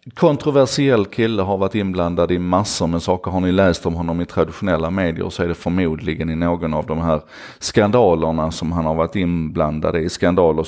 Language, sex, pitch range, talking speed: Swedish, male, 80-100 Hz, 190 wpm